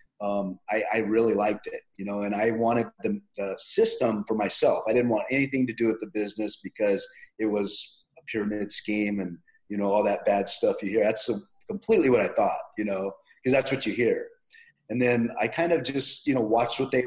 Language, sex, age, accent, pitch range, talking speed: English, male, 30-49, American, 110-130 Hz, 225 wpm